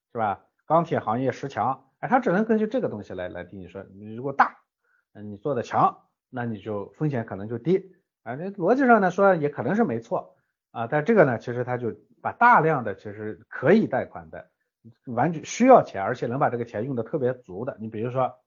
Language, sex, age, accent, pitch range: Chinese, male, 50-69, native, 100-140 Hz